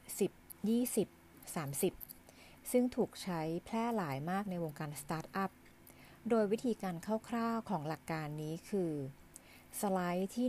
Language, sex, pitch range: Thai, female, 155-210 Hz